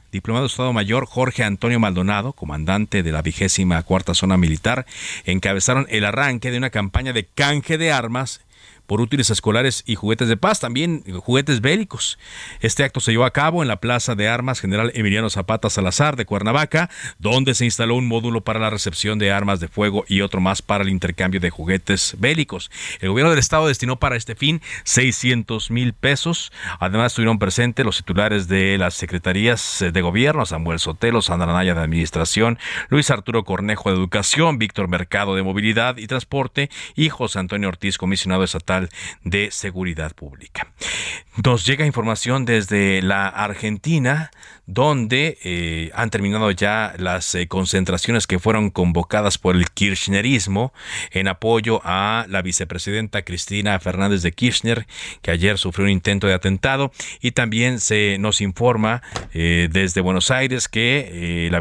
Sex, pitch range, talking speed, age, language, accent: male, 95-120 Hz, 165 wpm, 50-69, Spanish, Mexican